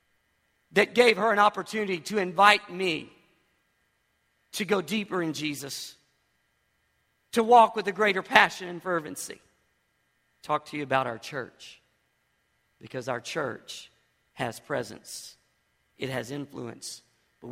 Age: 50-69